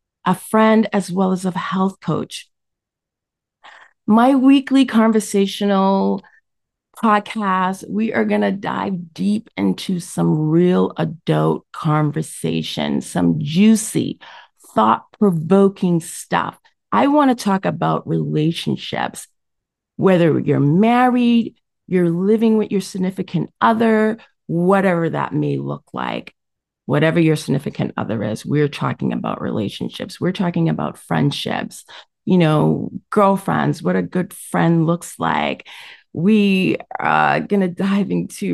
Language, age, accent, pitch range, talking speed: English, 40-59, American, 165-215 Hz, 115 wpm